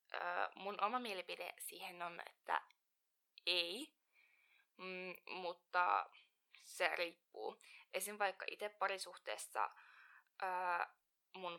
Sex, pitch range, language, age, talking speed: female, 180-230 Hz, Finnish, 20-39, 70 wpm